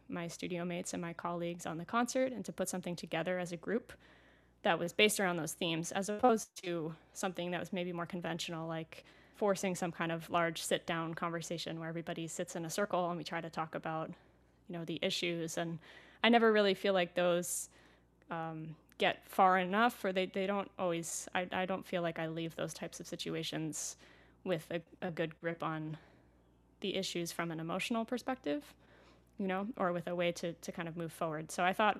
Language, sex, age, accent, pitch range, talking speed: English, female, 20-39, American, 165-195 Hz, 210 wpm